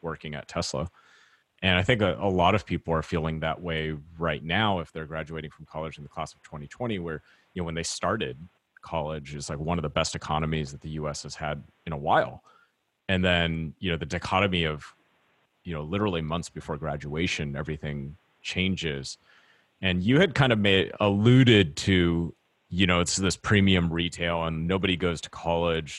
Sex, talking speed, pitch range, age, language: male, 190 wpm, 80-95 Hz, 30-49, English